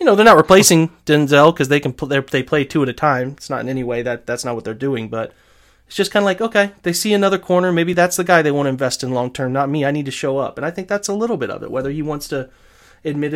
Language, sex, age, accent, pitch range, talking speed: English, male, 30-49, American, 135-180 Hz, 320 wpm